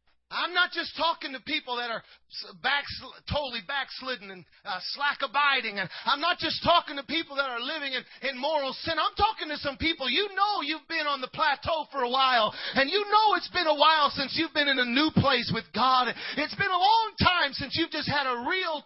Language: English